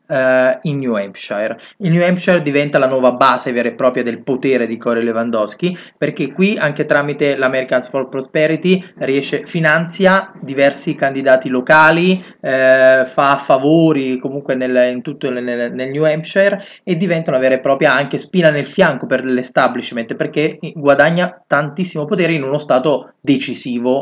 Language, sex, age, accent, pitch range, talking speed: Italian, male, 20-39, native, 130-170 Hz, 145 wpm